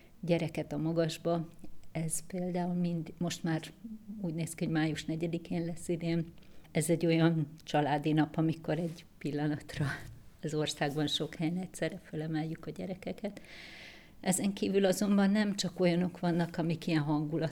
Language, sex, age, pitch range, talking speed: Hungarian, female, 50-69, 160-180 Hz, 140 wpm